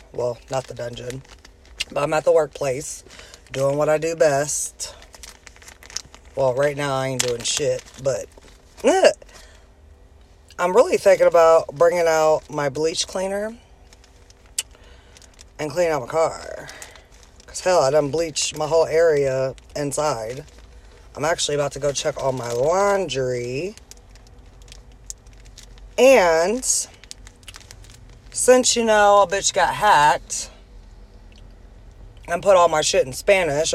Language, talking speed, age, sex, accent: English, 125 wpm, 20-39, female, American